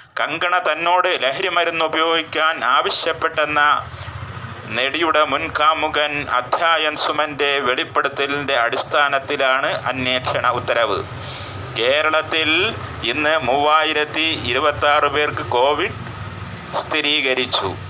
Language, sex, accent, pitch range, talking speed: Malayalam, male, native, 130-155 Hz, 75 wpm